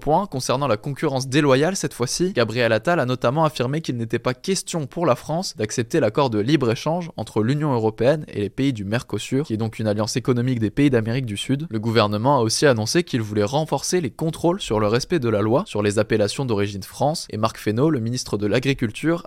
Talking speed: 220 wpm